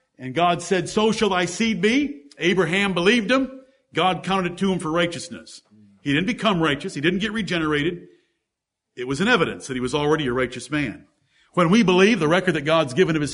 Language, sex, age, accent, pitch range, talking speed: English, male, 50-69, American, 170-240 Hz, 210 wpm